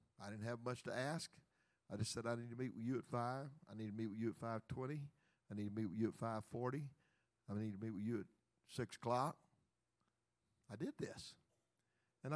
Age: 50-69